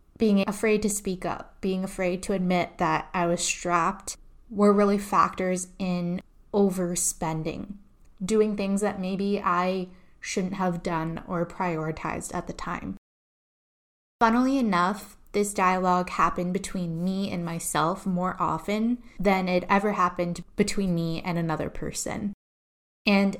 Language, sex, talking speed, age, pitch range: English, female, 135 wpm, 20-39, 175-205 Hz